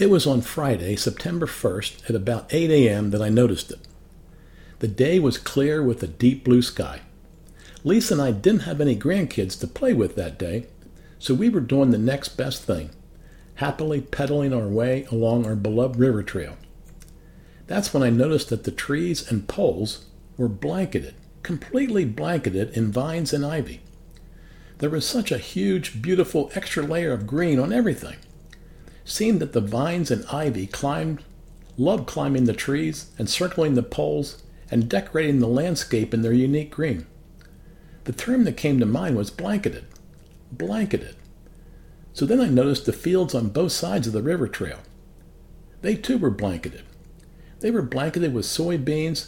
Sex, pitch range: male, 115-160 Hz